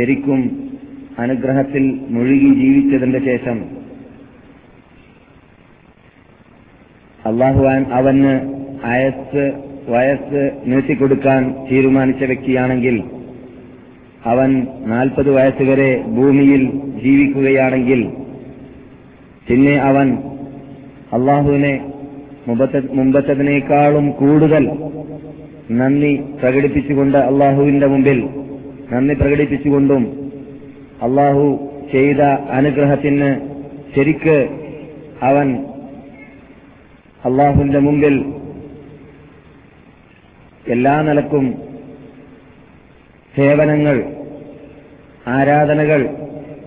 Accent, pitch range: native, 130-145 Hz